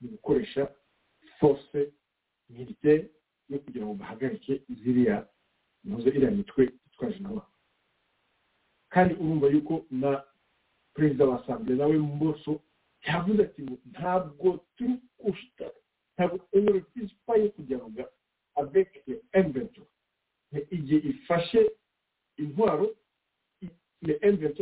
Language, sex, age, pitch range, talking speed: English, male, 50-69, 140-210 Hz, 65 wpm